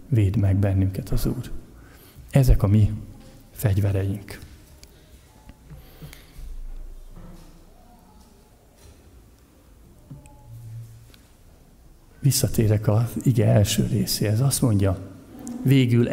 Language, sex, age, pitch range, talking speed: Hungarian, male, 50-69, 95-125 Hz, 65 wpm